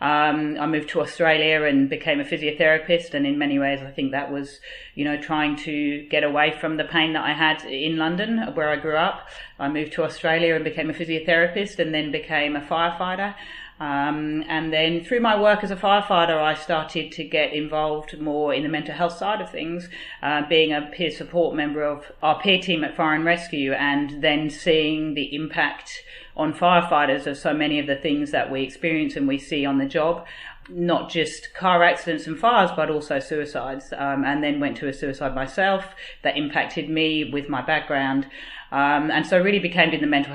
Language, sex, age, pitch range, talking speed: English, female, 40-59, 145-170 Hz, 205 wpm